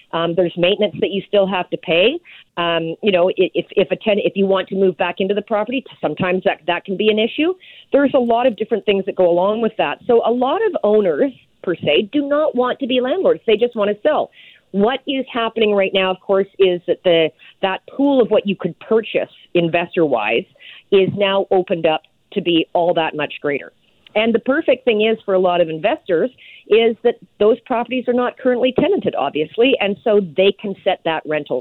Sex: female